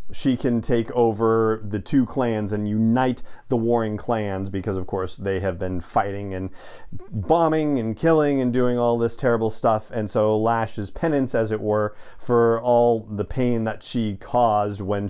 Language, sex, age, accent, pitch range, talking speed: English, male, 40-59, American, 105-125 Hz, 175 wpm